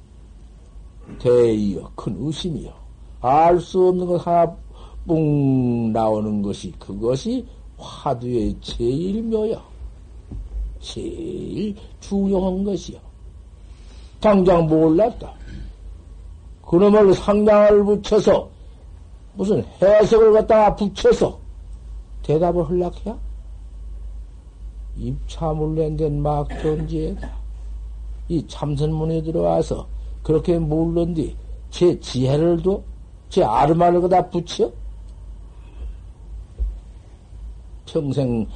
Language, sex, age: Korean, male, 60-79